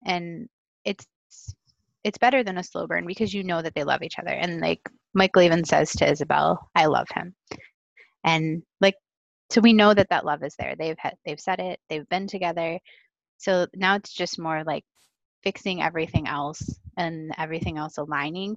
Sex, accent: female, American